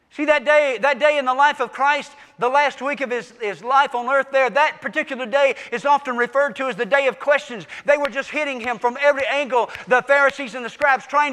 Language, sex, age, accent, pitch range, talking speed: English, male, 50-69, American, 260-310 Hz, 245 wpm